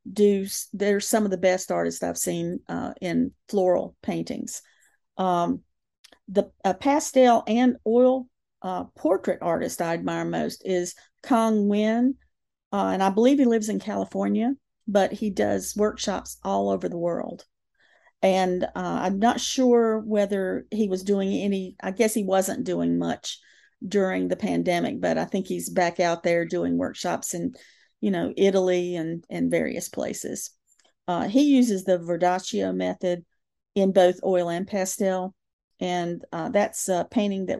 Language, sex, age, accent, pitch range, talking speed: English, female, 40-59, American, 175-210 Hz, 155 wpm